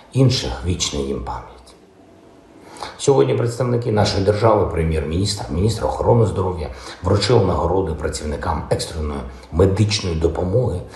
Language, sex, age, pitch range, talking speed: Ukrainian, male, 60-79, 85-110 Hz, 105 wpm